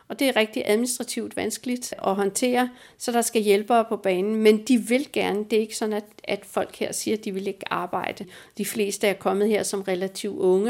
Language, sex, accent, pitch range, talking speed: Danish, female, native, 200-225 Hz, 220 wpm